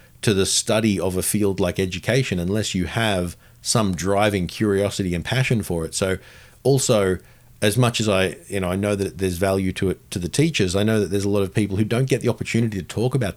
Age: 40-59